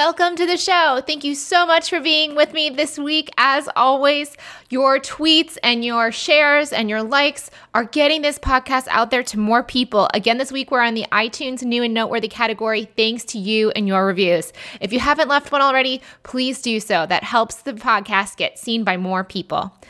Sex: female